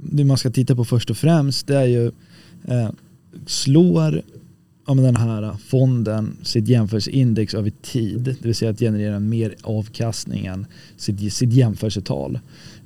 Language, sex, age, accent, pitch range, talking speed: Swedish, male, 20-39, native, 110-130 Hz, 140 wpm